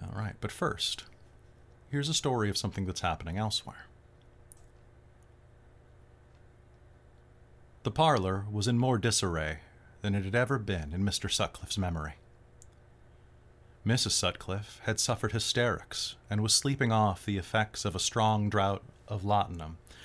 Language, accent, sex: English, American, male